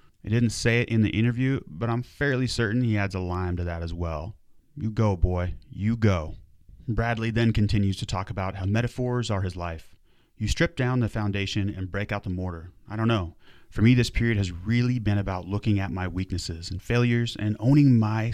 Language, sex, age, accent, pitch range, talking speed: English, male, 30-49, American, 95-115 Hz, 215 wpm